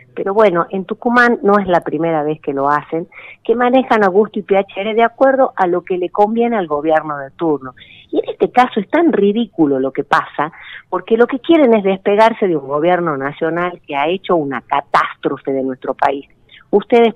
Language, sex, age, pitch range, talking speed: Spanish, female, 40-59, 155-210 Hz, 200 wpm